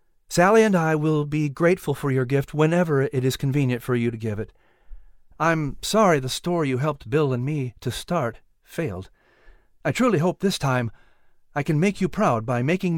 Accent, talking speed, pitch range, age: American, 195 wpm, 120-170 Hz, 50-69